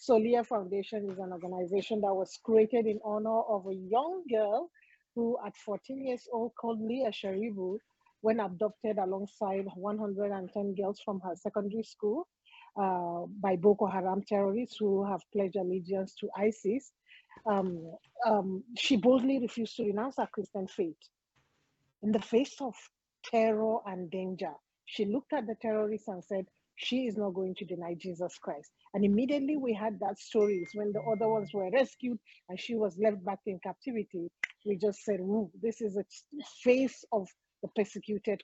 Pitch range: 190-225 Hz